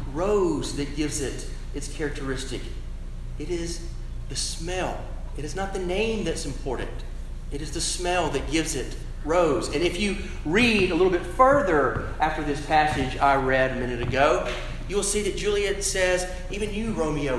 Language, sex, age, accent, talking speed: English, male, 40-59, American, 175 wpm